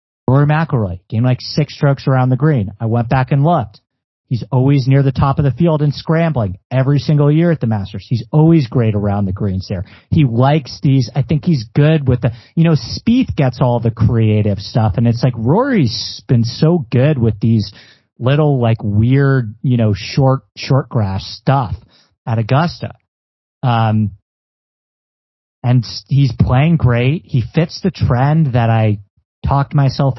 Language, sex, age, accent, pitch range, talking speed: English, male, 40-59, American, 115-155 Hz, 175 wpm